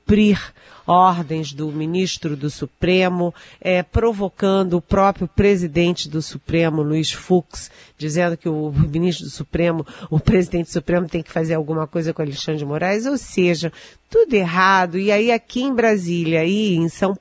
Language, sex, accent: Portuguese, female, Brazilian